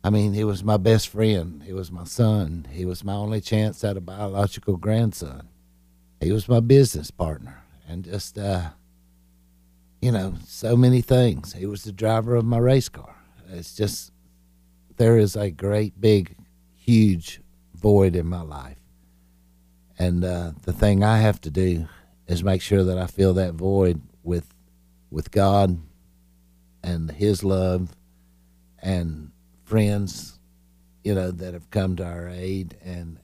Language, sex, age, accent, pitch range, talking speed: English, male, 60-79, American, 75-100 Hz, 155 wpm